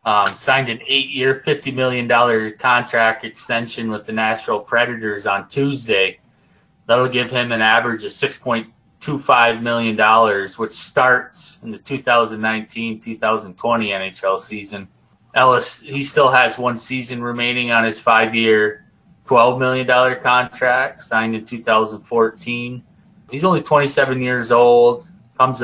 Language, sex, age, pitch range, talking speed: English, male, 20-39, 110-130 Hz, 120 wpm